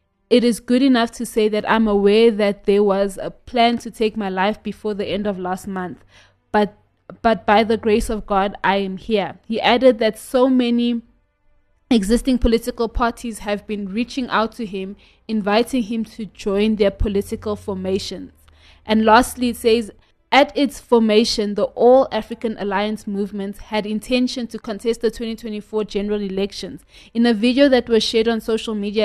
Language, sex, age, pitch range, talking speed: English, female, 20-39, 205-230 Hz, 170 wpm